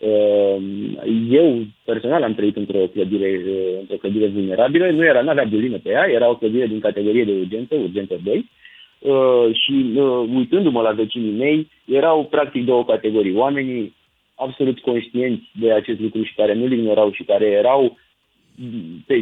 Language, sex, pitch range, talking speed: Romanian, male, 115-160 Hz, 150 wpm